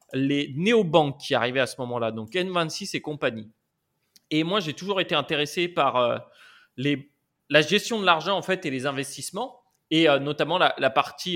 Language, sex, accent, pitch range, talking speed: French, male, French, 130-170 Hz, 185 wpm